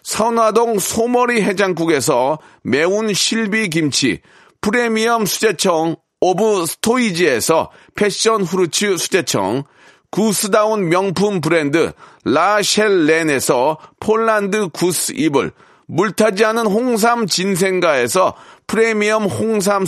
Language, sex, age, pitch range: Korean, male, 40-59, 180-225 Hz